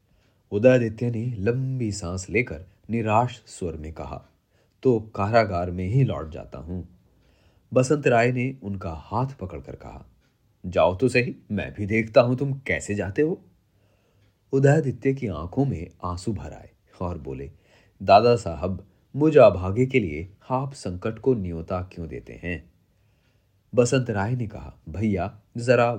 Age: 30-49